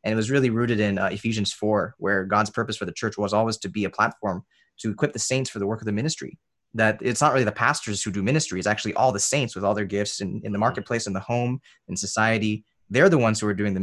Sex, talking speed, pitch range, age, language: male, 280 wpm, 105-135 Hz, 20-39, English